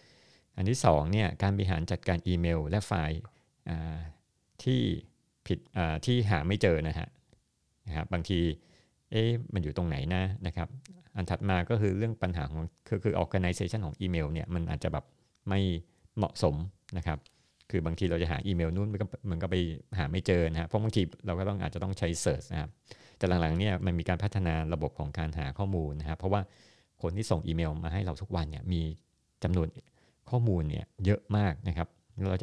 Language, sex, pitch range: Thai, male, 80-100 Hz